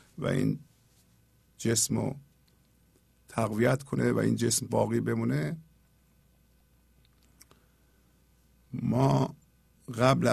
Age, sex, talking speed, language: 50-69, male, 75 wpm, Persian